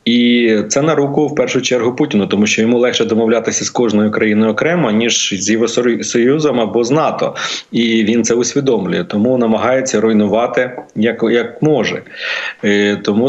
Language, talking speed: Ukrainian, 155 wpm